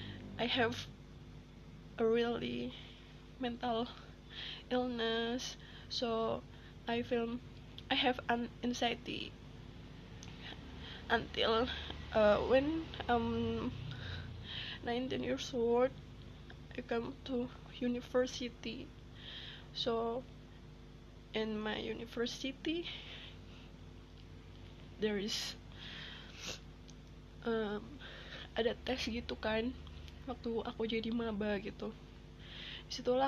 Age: 20-39